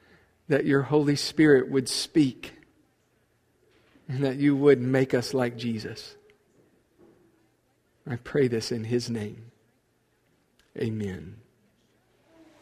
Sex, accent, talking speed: male, American, 100 wpm